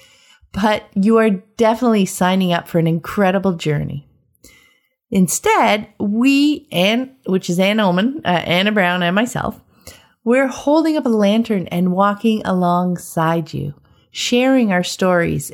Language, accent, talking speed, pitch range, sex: English, American, 130 wpm, 175-230 Hz, female